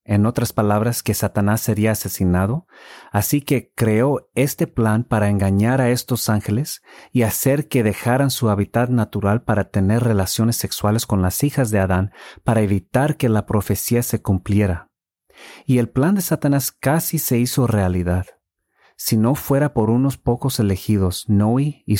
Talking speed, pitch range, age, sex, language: 160 wpm, 100-130 Hz, 40-59, male, English